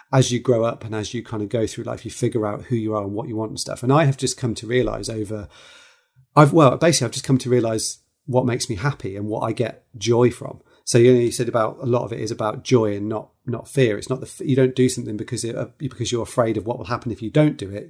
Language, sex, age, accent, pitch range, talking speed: English, male, 30-49, British, 110-130 Hz, 290 wpm